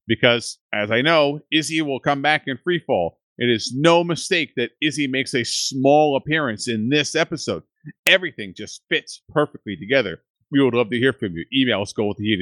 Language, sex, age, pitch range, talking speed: English, male, 40-59, 115-150 Hz, 190 wpm